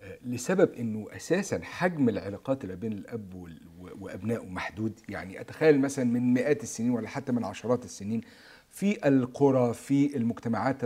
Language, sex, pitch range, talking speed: Arabic, male, 115-140 Hz, 140 wpm